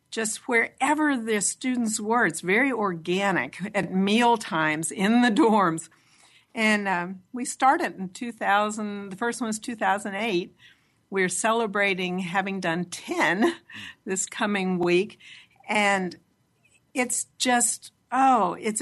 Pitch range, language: 185-245 Hz, English